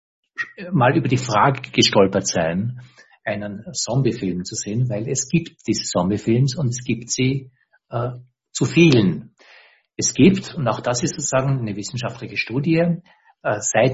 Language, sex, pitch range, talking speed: English, male, 115-135 Hz, 145 wpm